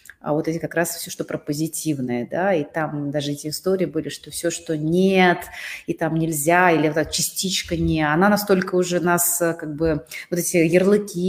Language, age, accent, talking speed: Russian, 30-49, native, 195 wpm